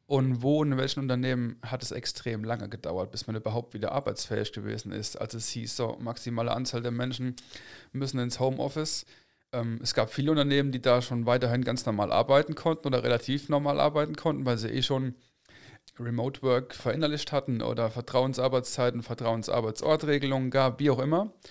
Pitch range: 120-145 Hz